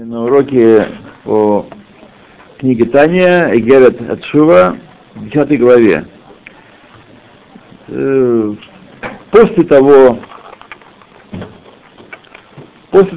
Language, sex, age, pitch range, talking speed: Russian, male, 60-79, 110-140 Hz, 65 wpm